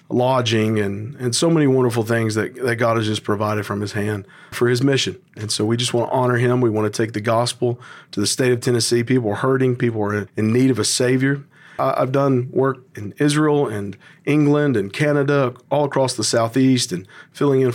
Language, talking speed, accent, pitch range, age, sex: English, 220 wpm, American, 115-140 Hz, 40-59, male